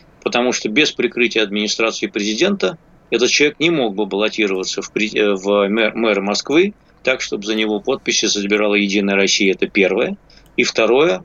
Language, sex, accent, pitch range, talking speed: Russian, male, native, 105-130 Hz, 145 wpm